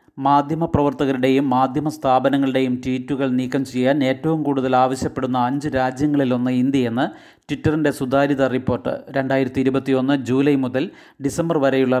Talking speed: 105 wpm